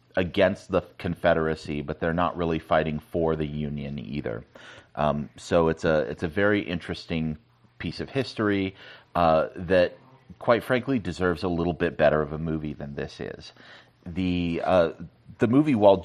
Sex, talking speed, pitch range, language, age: male, 160 wpm, 80-95 Hz, English, 30-49